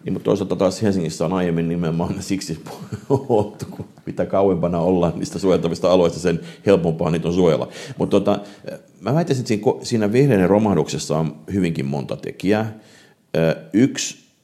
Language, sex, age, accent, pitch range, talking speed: Finnish, male, 50-69, native, 70-90 Hz, 145 wpm